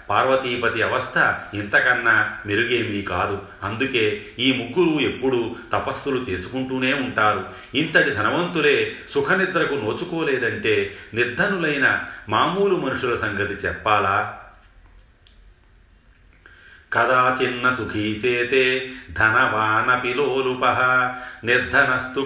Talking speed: 75 wpm